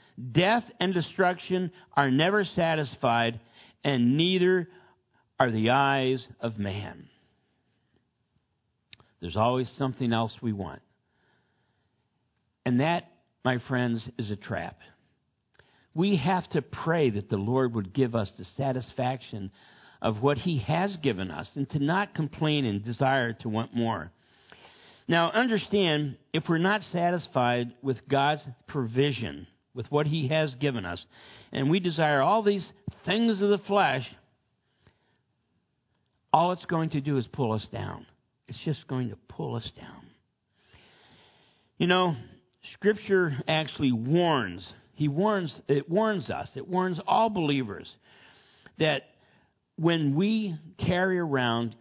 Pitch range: 115-165 Hz